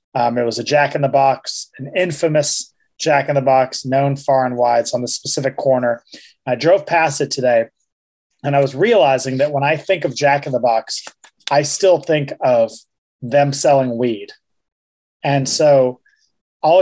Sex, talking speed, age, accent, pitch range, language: male, 150 wpm, 30-49, American, 130-160 Hz, English